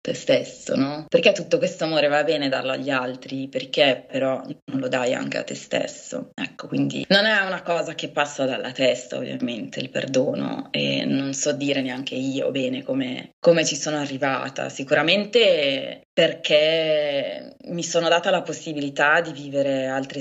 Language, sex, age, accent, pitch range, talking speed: Italian, female, 20-39, native, 135-170 Hz, 165 wpm